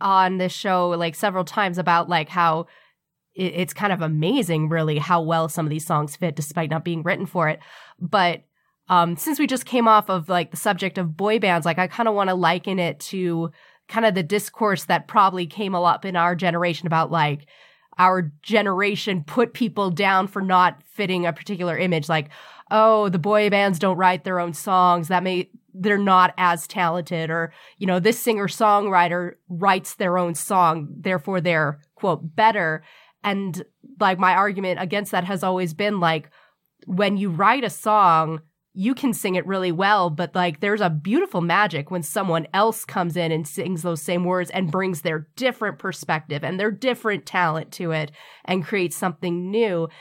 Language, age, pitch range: English, 20-39, 170-200 Hz